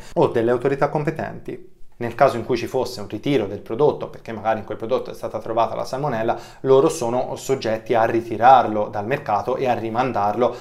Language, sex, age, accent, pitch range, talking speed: Italian, male, 20-39, native, 105-130 Hz, 190 wpm